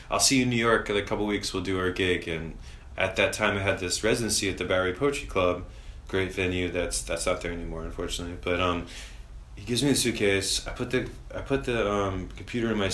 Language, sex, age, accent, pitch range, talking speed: English, male, 20-39, American, 85-105 Hz, 245 wpm